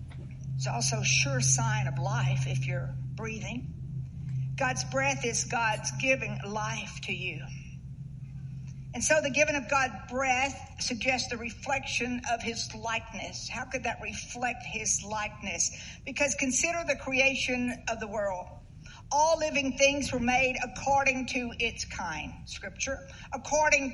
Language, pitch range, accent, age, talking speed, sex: English, 215-280 Hz, American, 50-69, 140 wpm, female